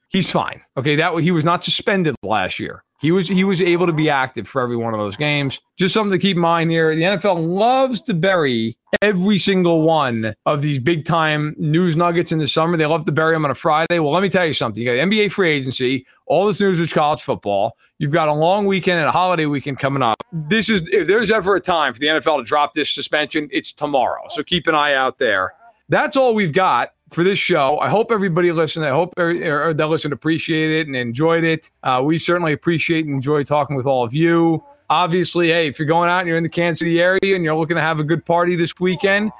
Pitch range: 145-180 Hz